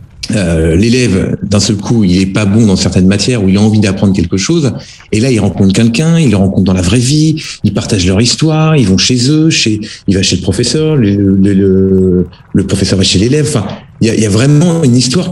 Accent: French